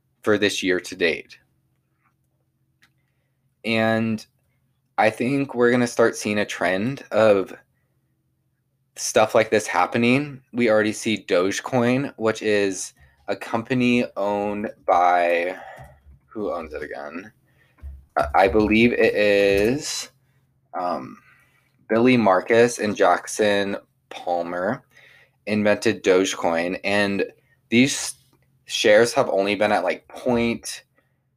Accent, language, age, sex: American, English, 20-39, male